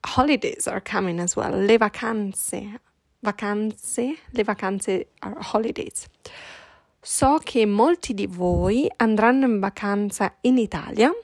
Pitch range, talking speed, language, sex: 200-250 Hz, 115 wpm, Italian, female